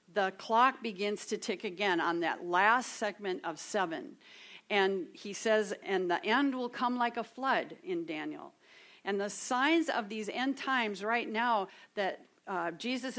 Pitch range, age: 200-260 Hz, 50-69